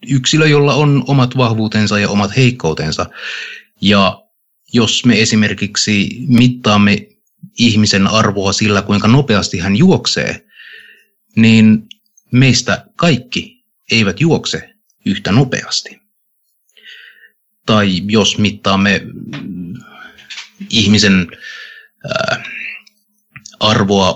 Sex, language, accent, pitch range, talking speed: male, Finnish, native, 105-160 Hz, 80 wpm